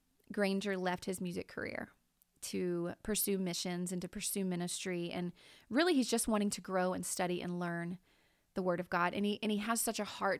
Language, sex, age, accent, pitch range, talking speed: English, female, 30-49, American, 185-220 Hz, 200 wpm